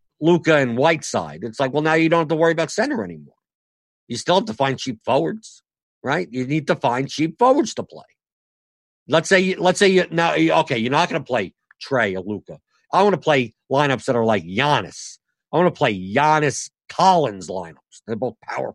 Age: 50-69